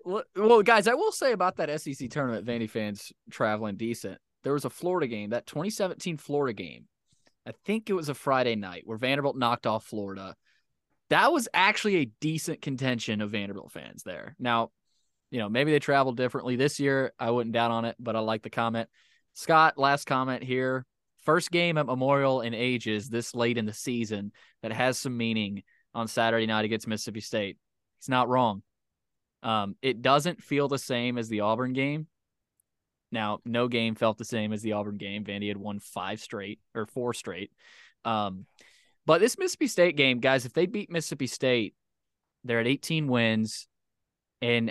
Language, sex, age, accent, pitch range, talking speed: English, male, 20-39, American, 110-140 Hz, 185 wpm